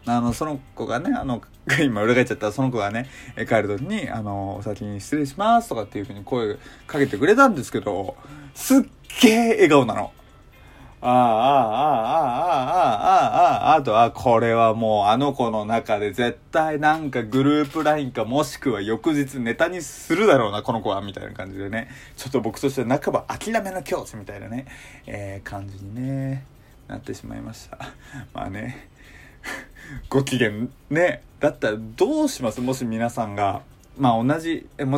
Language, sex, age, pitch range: Japanese, male, 20-39, 110-150 Hz